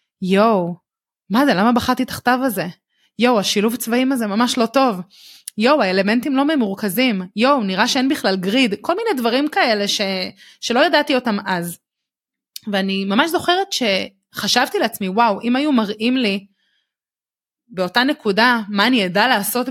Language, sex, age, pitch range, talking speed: Hebrew, female, 20-39, 205-260 Hz, 150 wpm